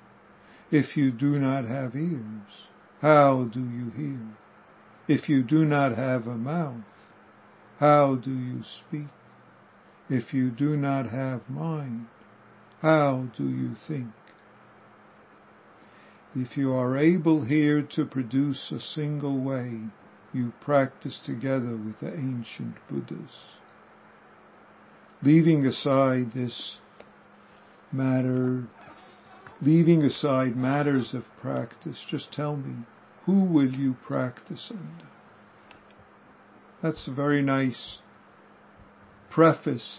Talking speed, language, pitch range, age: 105 wpm, English, 120-145 Hz, 60-79